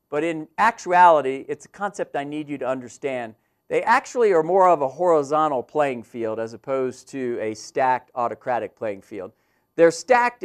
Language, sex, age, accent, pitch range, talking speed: English, male, 50-69, American, 120-160 Hz, 170 wpm